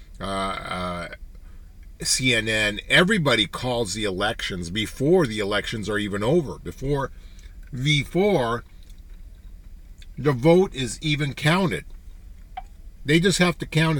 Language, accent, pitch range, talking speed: English, American, 85-145 Hz, 105 wpm